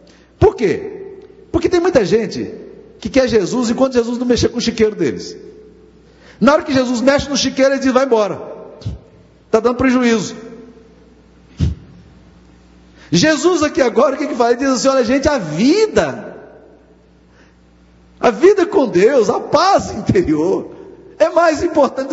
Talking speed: 150 wpm